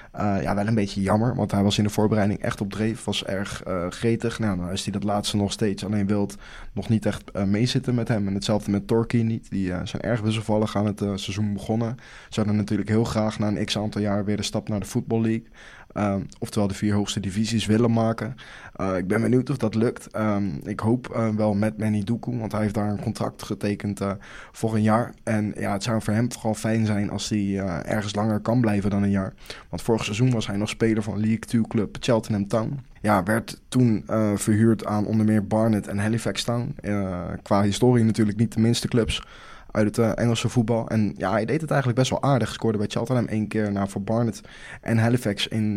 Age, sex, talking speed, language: 20-39, male, 230 wpm, English